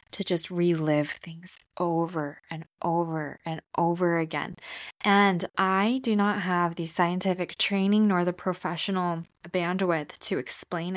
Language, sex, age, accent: English, female, 10-29, American